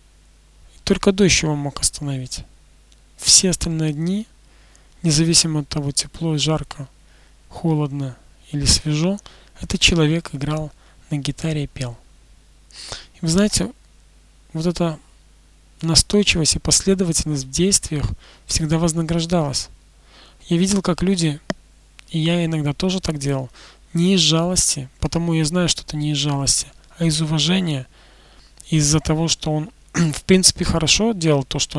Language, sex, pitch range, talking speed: Russian, male, 140-170 Hz, 130 wpm